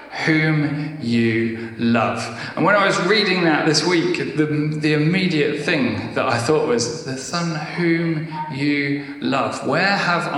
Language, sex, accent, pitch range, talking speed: English, male, British, 120-155 Hz, 150 wpm